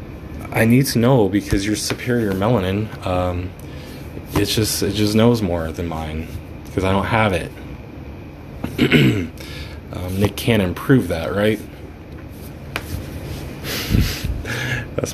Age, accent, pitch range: 20-39, American, 80-110 Hz